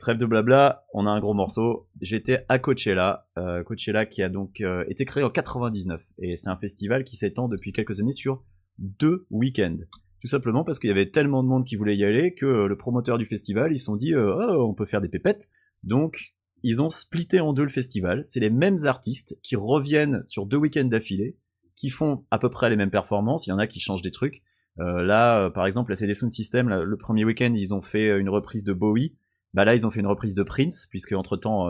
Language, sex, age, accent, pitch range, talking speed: French, male, 30-49, French, 95-125 Hz, 235 wpm